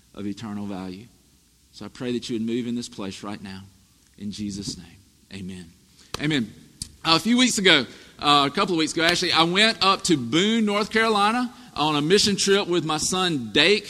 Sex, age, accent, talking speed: male, 40-59, American, 205 wpm